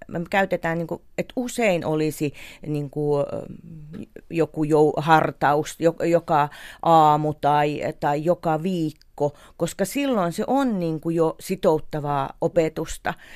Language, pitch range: Finnish, 155-195 Hz